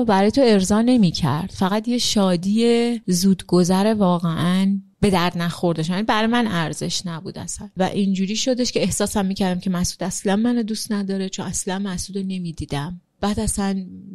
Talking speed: 150 wpm